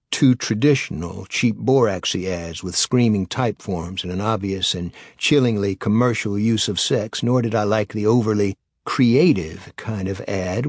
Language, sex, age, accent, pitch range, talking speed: English, male, 60-79, American, 95-120 Hz, 155 wpm